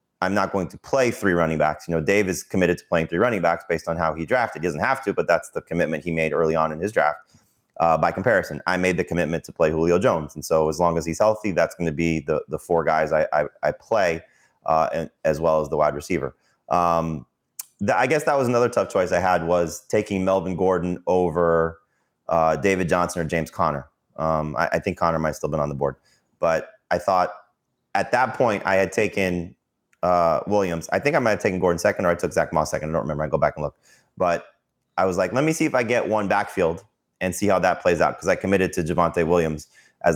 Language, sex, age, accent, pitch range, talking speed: English, male, 30-49, American, 80-90 Hz, 250 wpm